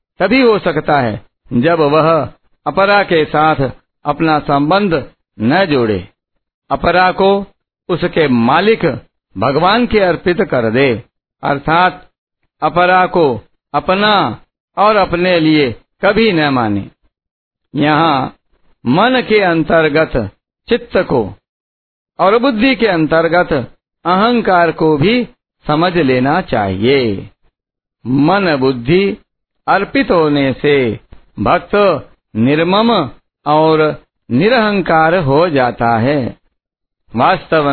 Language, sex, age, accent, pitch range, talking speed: Hindi, male, 60-79, native, 140-185 Hz, 95 wpm